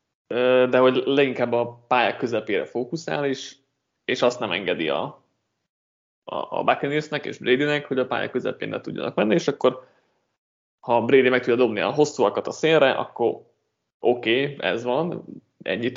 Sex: male